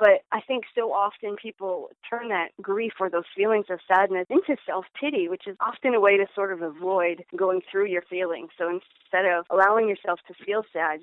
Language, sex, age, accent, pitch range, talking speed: English, female, 40-59, American, 180-225 Hz, 200 wpm